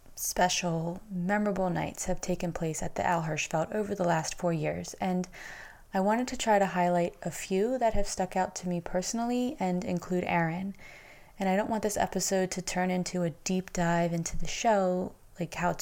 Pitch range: 175-210 Hz